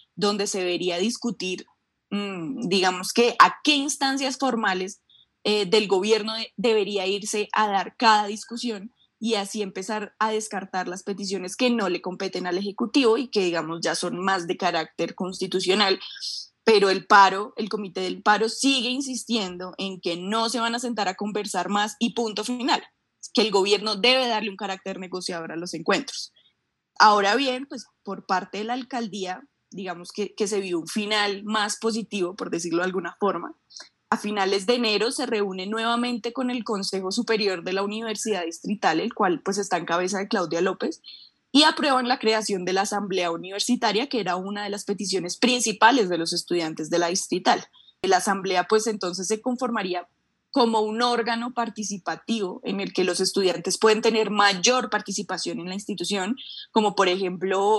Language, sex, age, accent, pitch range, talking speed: Spanish, female, 10-29, Colombian, 185-225 Hz, 175 wpm